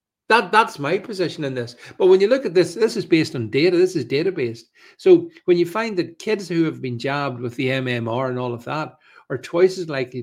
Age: 50-69